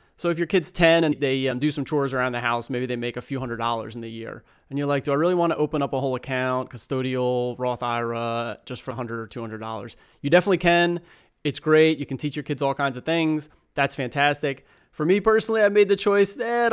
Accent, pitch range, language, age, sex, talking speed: American, 125-165 Hz, English, 30-49, male, 250 wpm